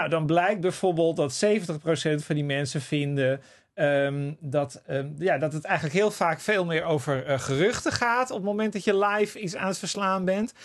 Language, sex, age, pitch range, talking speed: Dutch, male, 40-59, 150-225 Hz, 205 wpm